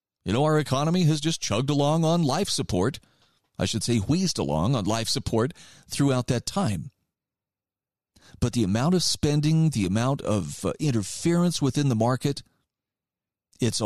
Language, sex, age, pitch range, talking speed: English, male, 40-59, 110-145 Hz, 155 wpm